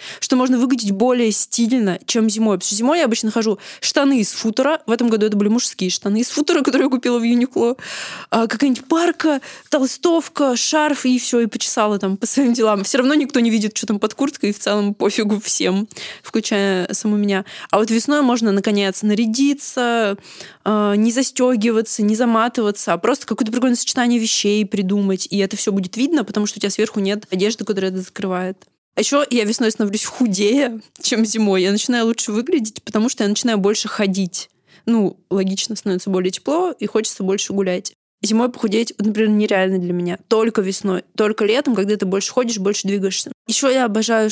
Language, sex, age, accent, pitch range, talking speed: Russian, female, 20-39, native, 200-245 Hz, 185 wpm